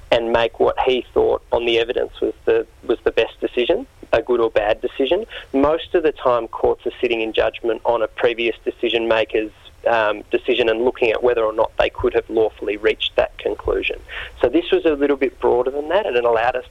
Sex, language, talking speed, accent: male, English, 215 wpm, Australian